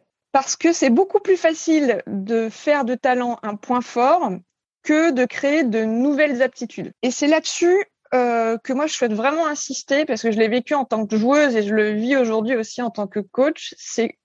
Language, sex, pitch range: French, female, 220-290 Hz